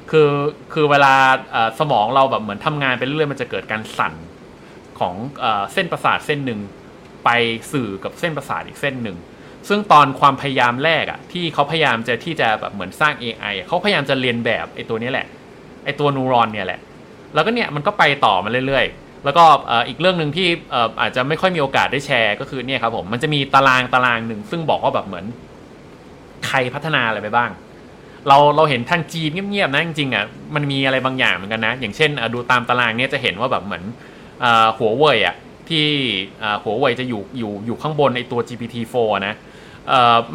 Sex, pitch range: male, 120-155 Hz